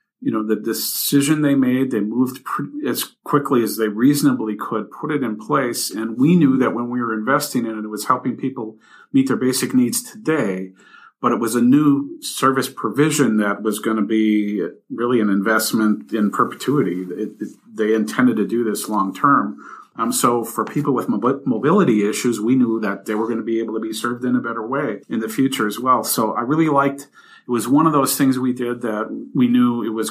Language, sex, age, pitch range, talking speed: English, male, 50-69, 110-140 Hz, 210 wpm